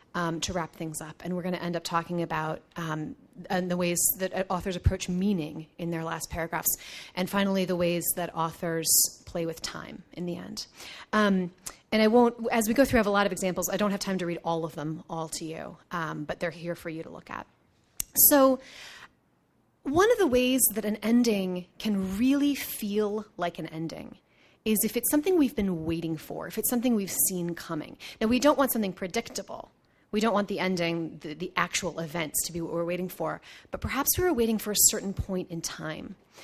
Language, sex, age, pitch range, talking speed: English, female, 30-49, 170-210 Hz, 215 wpm